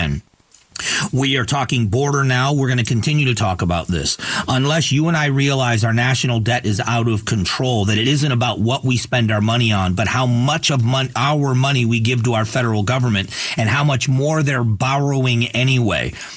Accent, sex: American, male